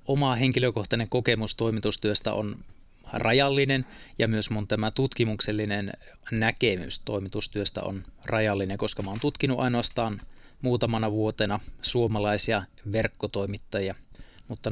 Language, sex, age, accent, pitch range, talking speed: Finnish, male, 20-39, native, 105-125 Hz, 100 wpm